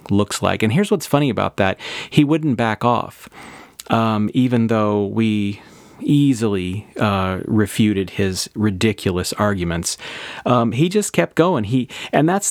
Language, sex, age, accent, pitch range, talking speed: English, male, 40-59, American, 100-125 Hz, 145 wpm